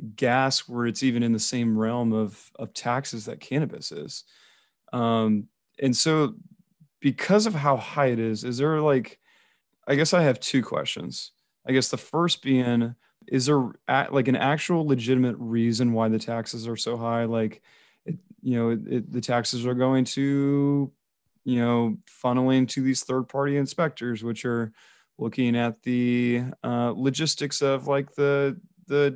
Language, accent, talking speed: English, American, 155 wpm